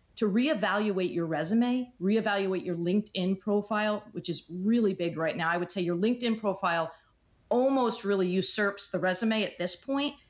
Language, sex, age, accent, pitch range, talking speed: English, female, 40-59, American, 180-220 Hz, 165 wpm